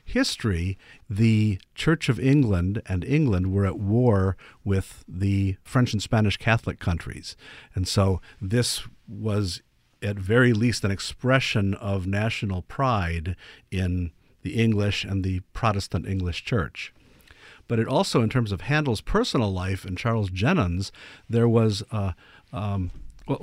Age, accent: 50-69, American